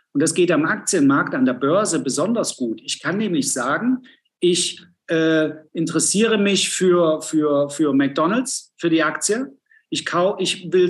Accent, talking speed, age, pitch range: German, 160 wpm, 50-69, 155-220 Hz